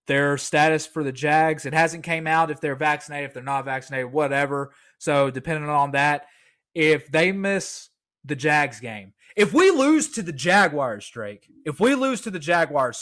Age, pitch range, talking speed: 20-39, 140-175 Hz, 185 wpm